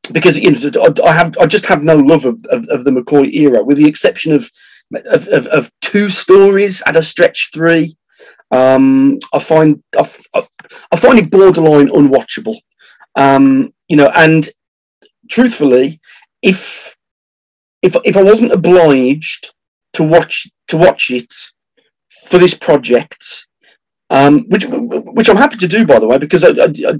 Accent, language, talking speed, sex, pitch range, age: British, English, 155 wpm, male, 140-200 Hz, 40-59